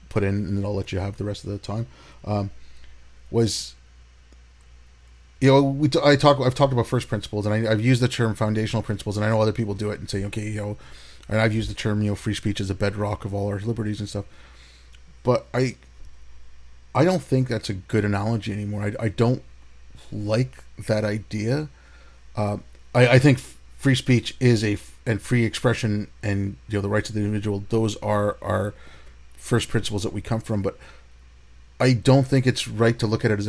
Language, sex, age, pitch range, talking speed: English, male, 30-49, 95-115 Hz, 210 wpm